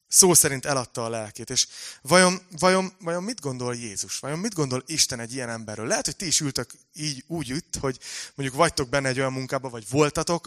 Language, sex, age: Hungarian, male, 30-49